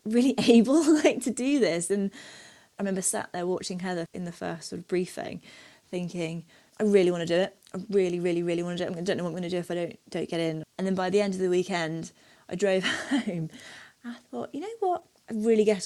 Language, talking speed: English, 255 wpm